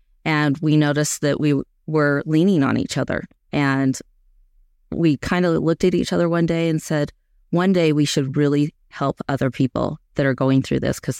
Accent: American